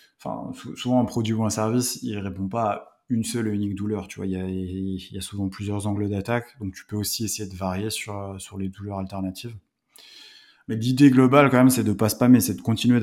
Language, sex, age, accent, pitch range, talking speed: French, male, 20-39, French, 105-125 Hz, 245 wpm